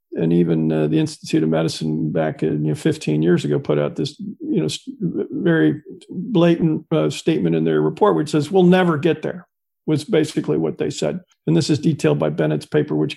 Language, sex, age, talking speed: English, male, 50-69, 210 wpm